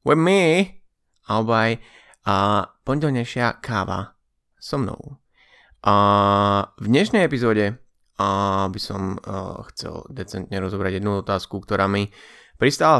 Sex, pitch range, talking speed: male, 95-115 Hz, 100 wpm